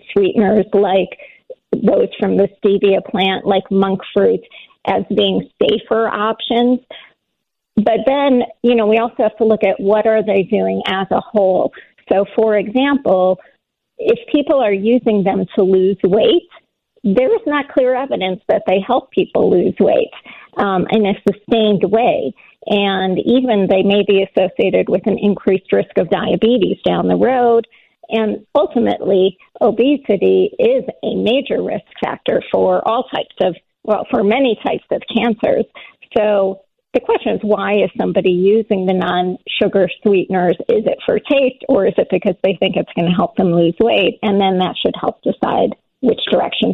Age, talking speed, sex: 40-59, 165 wpm, female